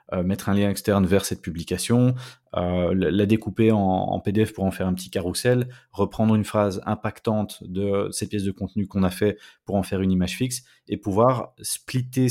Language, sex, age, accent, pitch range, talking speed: French, male, 30-49, French, 100-120 Hz, 200 wpm